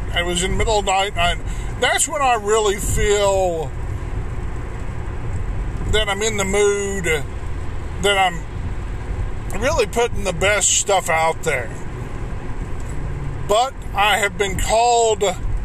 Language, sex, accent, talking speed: English, male, American, 125 wpm